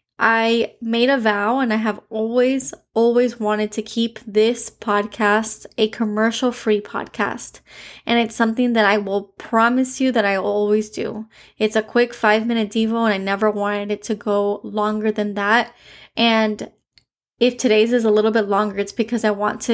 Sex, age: female, 20-39